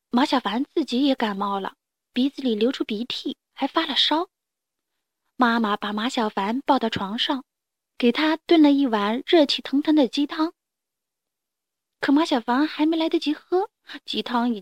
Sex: female